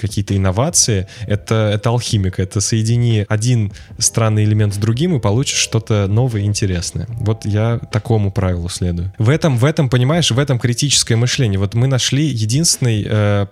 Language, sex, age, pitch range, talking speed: Russian, male, 20-39, 105-125 Hz, 155 wpm